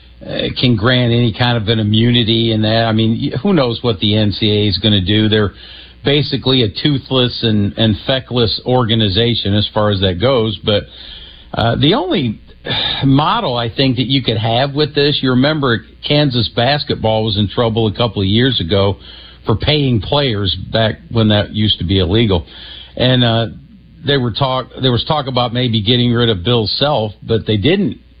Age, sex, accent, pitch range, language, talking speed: 50-69, male, American, 105-125 Hz, English, 185 wpm